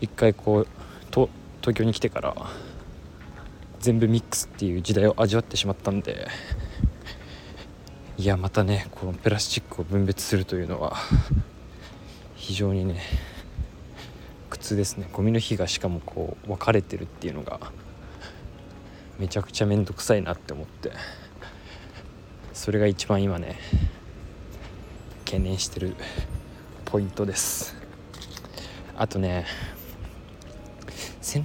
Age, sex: 20-39, male